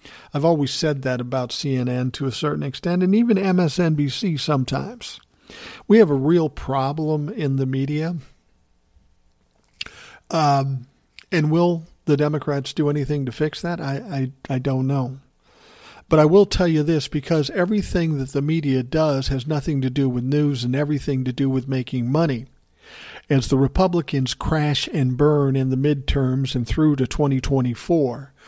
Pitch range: 130-155 Hz